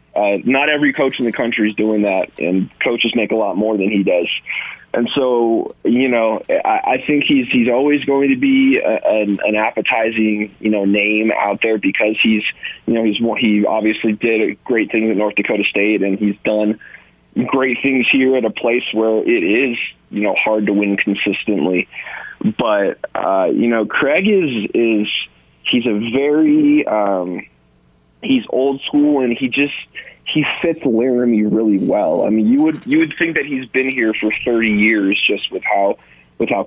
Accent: American